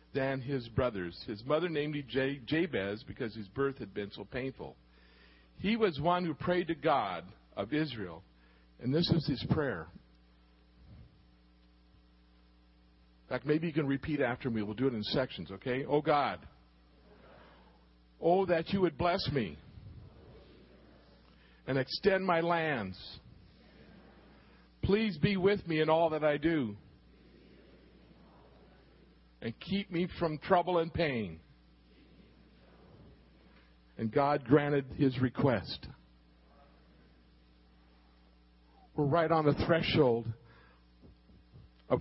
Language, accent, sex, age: English, American, male, 50-69